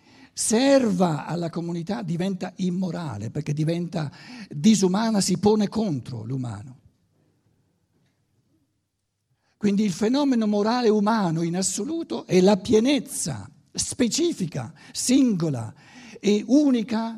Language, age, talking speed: Italian, 60-79, 90 wpm